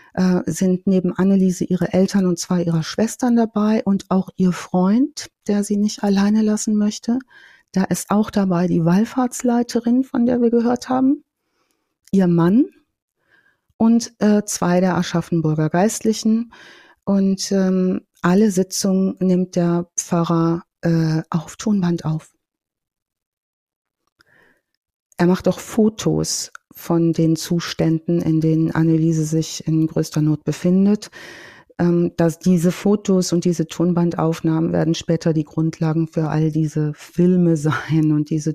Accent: German